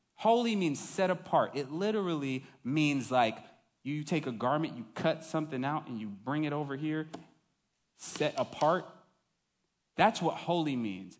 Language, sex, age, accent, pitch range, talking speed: English, male, 30-49, American, 140-185 Hz, 150 wpm